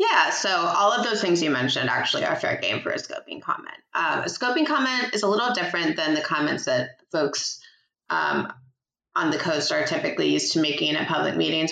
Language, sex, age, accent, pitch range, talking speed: English, female, 20-39, American, 155-235 Hz, 210 wpm